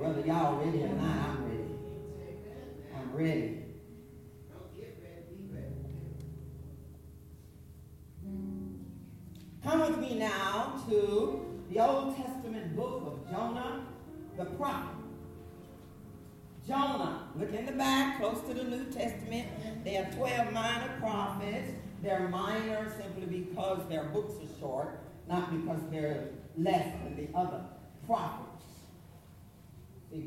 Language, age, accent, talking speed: English, 40-59, American, 105 wpm